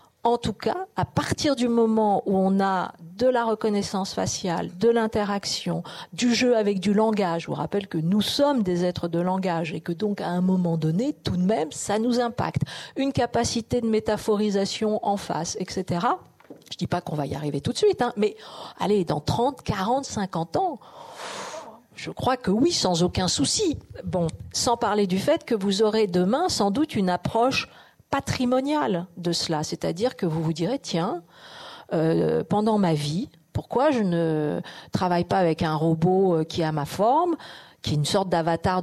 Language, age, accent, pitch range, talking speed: French, 50-69, French, 165-220 Hz, 185 wpm